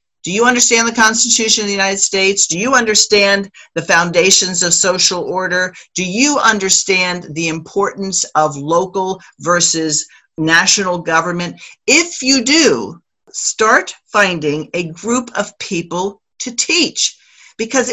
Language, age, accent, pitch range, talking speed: English, 50-69, American, 165-220 Hz, 130 wpm